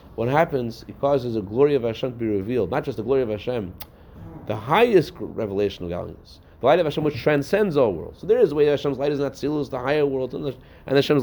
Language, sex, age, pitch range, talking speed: English, male, 30-49, 110-145 Hz, 240 wpm